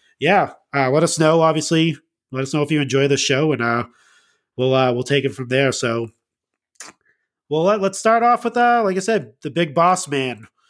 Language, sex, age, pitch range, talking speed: English, male, 30-49, 130-155 Hz, 215 wpm